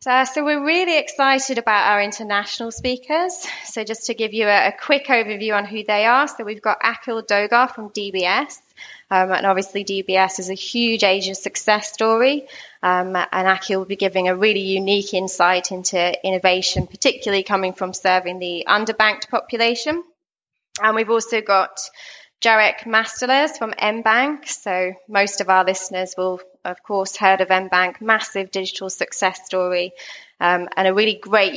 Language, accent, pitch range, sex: English, British, 180-225 Hz, female